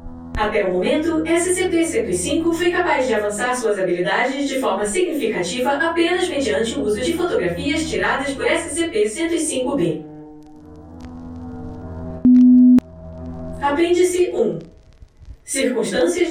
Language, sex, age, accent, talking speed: Portuguese, female, 10-29, Brazilian, 90 wpm